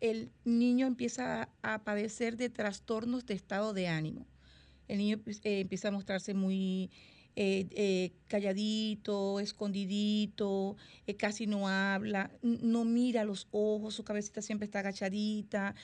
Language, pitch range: Spanish, 195-230 Hz